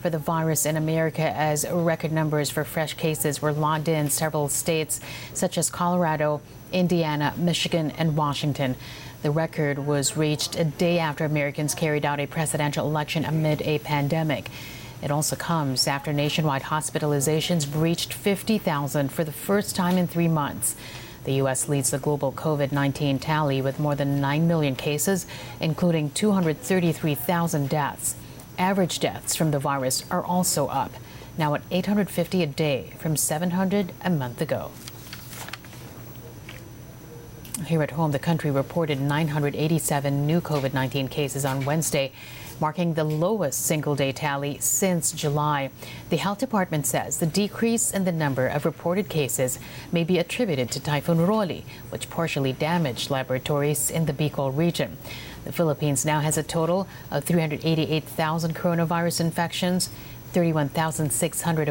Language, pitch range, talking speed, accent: English, 140-170 Hz, 140 wpm, American